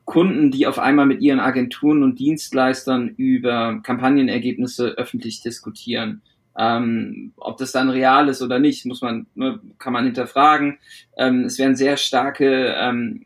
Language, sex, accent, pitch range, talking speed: German, male, German, 130-170 Hz, 145 wpm